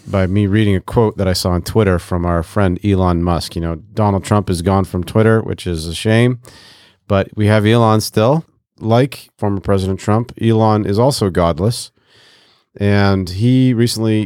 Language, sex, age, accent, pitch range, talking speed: English, male, 40-59, American, 95-115 Hz, 180 wpm